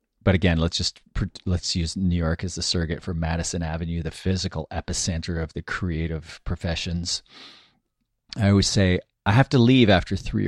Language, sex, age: English, male, 40-59